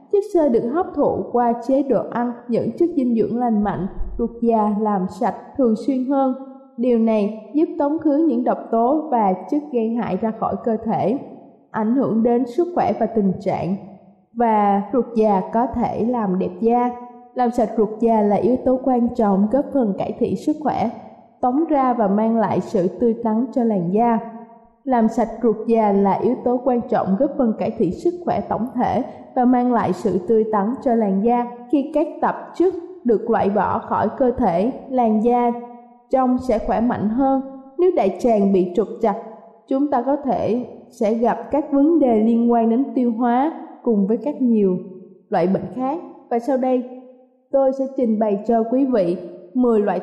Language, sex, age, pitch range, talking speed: Vietnamese, female, 20-39, 215-260 Hz, 195 wpm